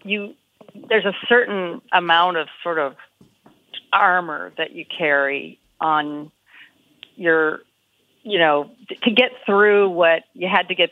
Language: English